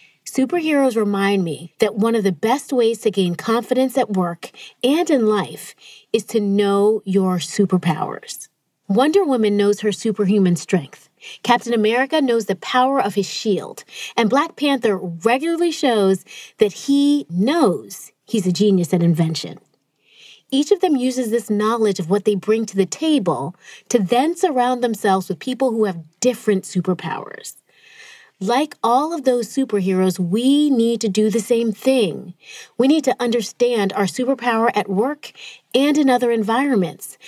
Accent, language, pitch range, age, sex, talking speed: American, English, 195-255 Hz, 30-49, female, 155 wpm